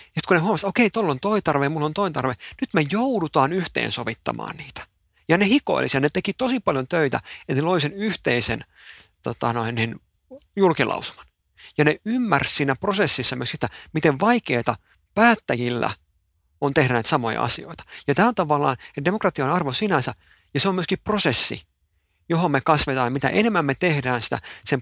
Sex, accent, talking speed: male, native, 185 wpm